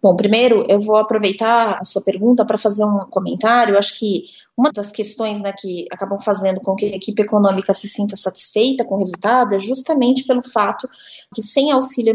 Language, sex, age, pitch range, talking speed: Portuguese, female, 20-39, 210-255 Hz, 195 wpm